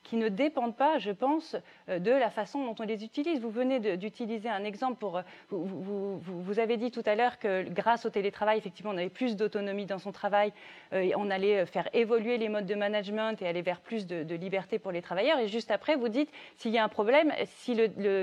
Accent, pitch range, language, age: French, 200-275 Hz, French, 30-49